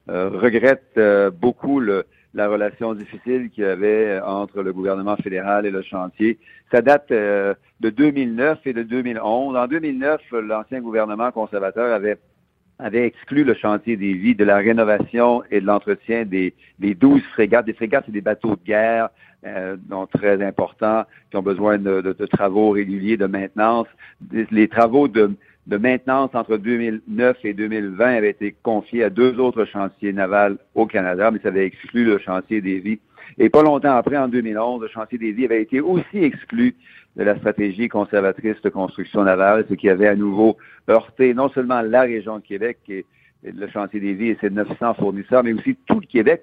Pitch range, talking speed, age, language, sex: 100-125 Hz, 180 wpm, 50-69, French, male